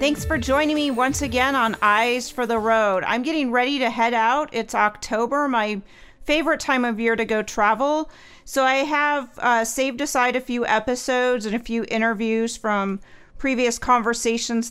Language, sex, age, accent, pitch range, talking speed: English, female, 40-59, American, 215-270 Hz, 175 wpm